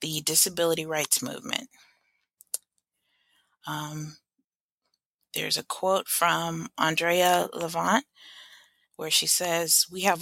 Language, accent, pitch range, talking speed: English, American, 155-195 Hz, 95 wpm